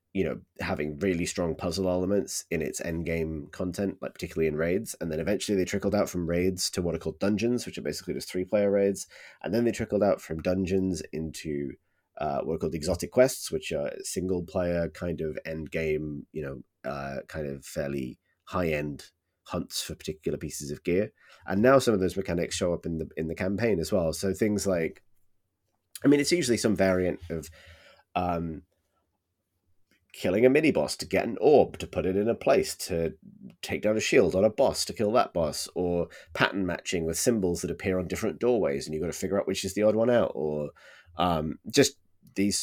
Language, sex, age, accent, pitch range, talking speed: English, male, 30-49, British, 80-100 Hz, 205 wpm